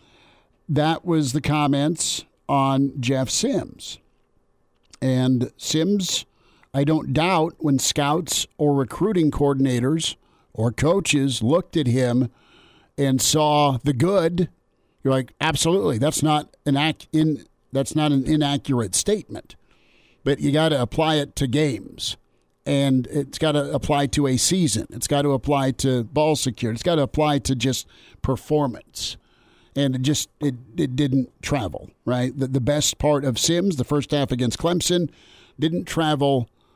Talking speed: 145 wpm